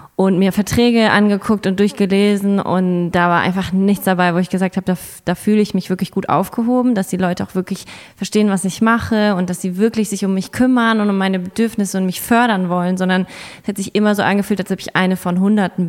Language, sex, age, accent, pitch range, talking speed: German, female, 20-39, German, 180-215 Hz, 235 wpm